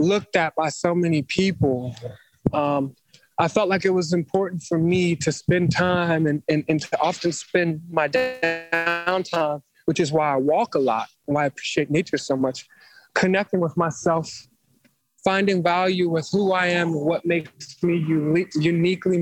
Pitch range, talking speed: 155-180 Hz, 160 wpm